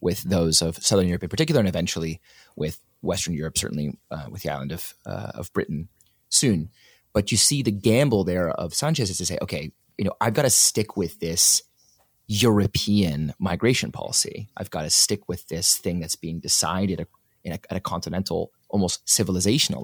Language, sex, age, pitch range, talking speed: English, male, 30-49, 85-105 Hz, 190 wpm